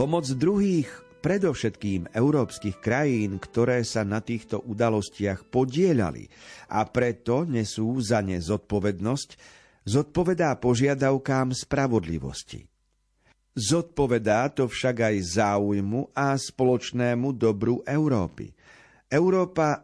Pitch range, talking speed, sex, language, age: 110-140 Hz, 90 wpm, male, Slovak, 50-69